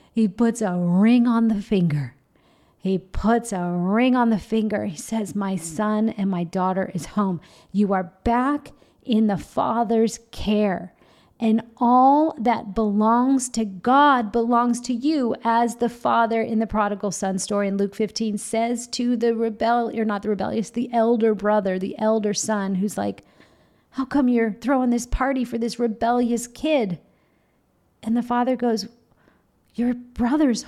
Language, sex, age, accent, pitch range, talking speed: English, female, 40-59, American, 195-245 Hz, 160 wpm